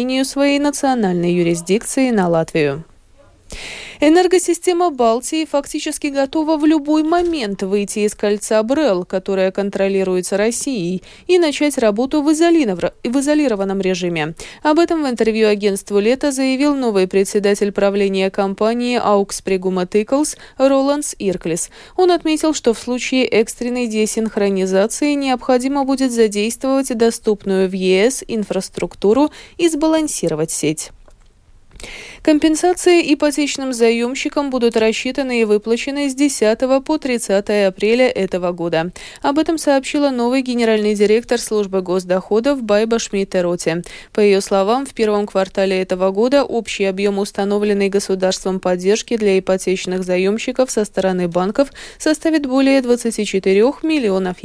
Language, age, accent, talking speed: Russian, 20-39, native, 115 wpm